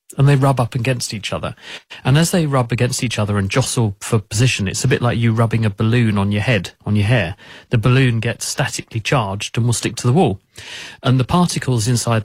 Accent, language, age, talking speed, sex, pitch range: British, English, 40-59, 230 wpm, male, 110-130 Hz